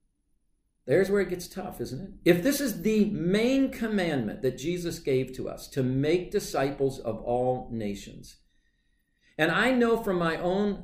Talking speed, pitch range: 165 wpm, 150-205 Hz